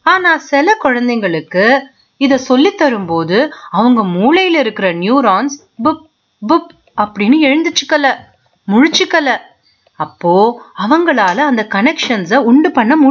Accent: native